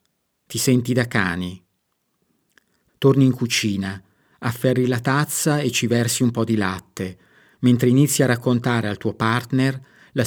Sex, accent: male, native